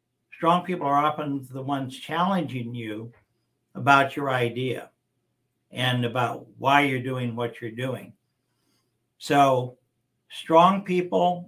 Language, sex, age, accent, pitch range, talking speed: English, male, 60-79, American, 120-150 Hz, 115 wpm